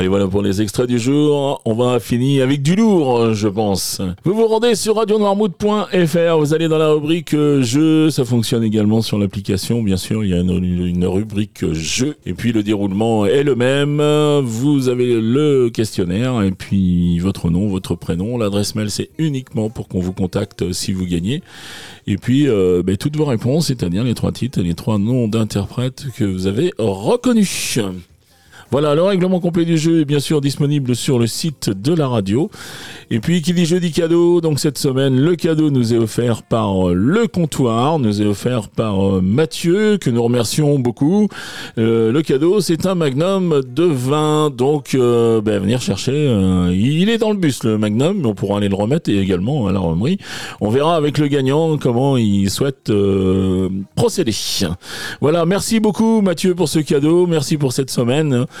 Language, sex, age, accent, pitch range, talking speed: French, male, 40-59, French, 100-155 Hz, 185 wpm